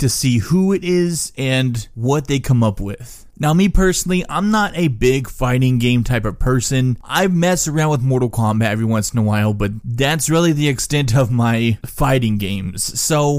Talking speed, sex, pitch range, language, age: 195 wpm, male, 115-155 Hz, English, 20-39